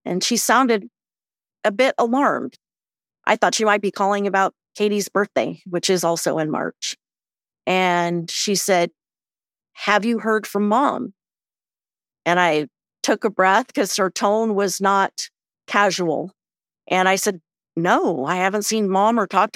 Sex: female